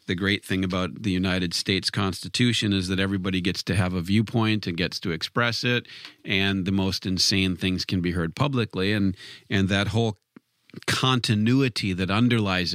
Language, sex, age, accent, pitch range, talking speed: English, male, 40-59, American, 95-115 Hz, 175 wpm